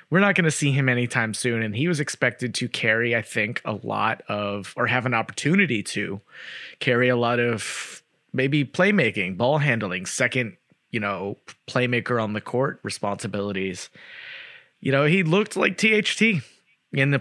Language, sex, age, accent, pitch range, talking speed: English, male, 30-49, American, 120-150 Hz, 165 wpm